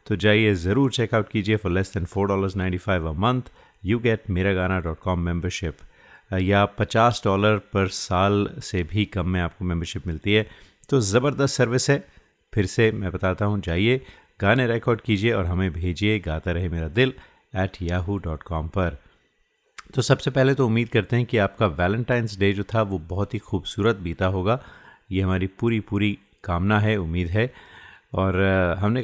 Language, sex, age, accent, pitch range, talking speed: Hindi, male, 30-49, native, 95-110 Hz, 180 wpm